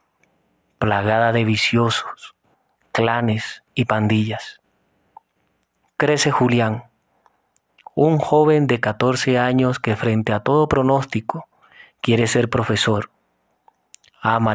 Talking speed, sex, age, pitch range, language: 90 wpm, male, 30-49, 110-135 Hz, Spanish